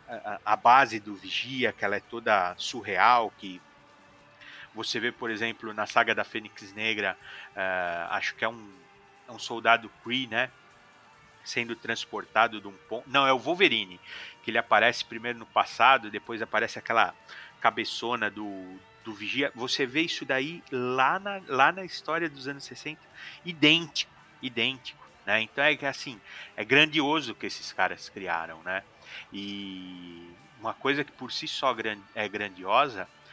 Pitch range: 100-130 Hz